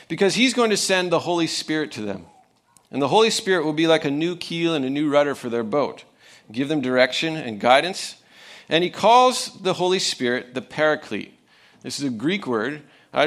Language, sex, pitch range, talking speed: English, male, 135-185 Hz, 210 wpm